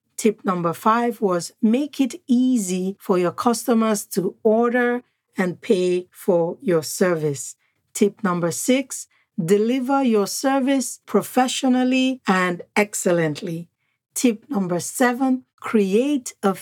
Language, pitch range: English, 175-225 Hz